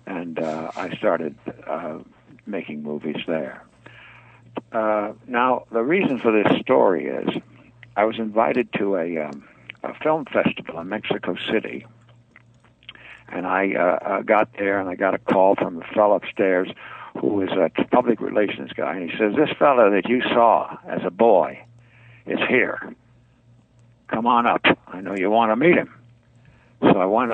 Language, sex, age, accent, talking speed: English, male, 60-79, American, 165 wpm